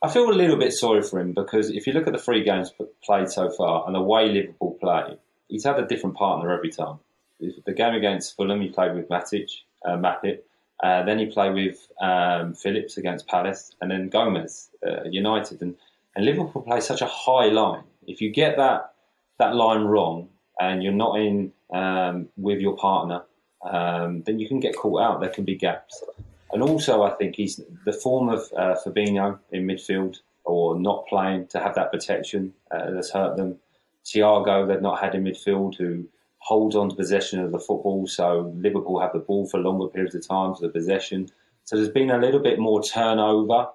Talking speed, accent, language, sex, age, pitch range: 200 wpm, British, English, male, 30-49, 95-105 Hz